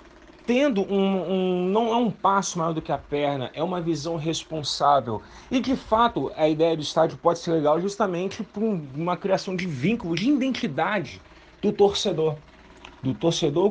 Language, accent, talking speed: Portuguese, Brazilian, 165 wpm